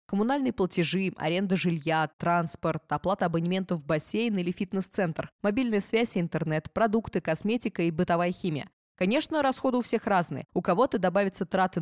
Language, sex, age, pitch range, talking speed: Russian, female, 20-39, 165-210 Hz, 140 wpm